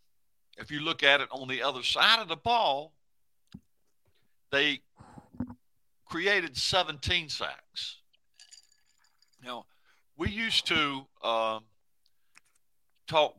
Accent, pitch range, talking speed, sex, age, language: American, 110-145 Hz, 100 wpm, male, 60-79, English